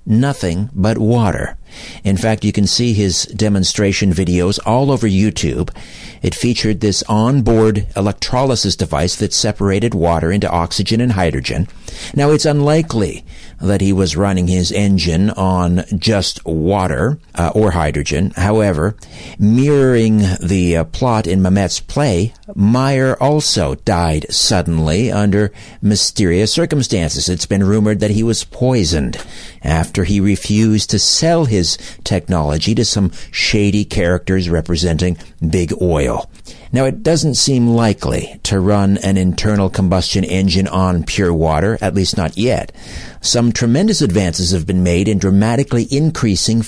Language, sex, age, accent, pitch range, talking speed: English, male, 60-79, American, 90-115 Hz, 135 wpm